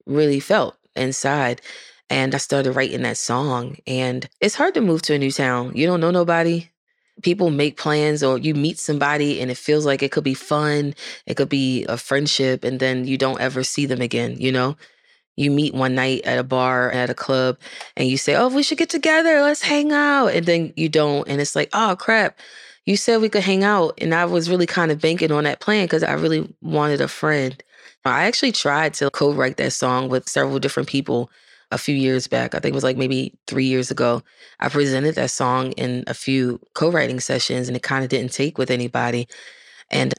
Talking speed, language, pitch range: 220 wpm, English, 130-160 Hz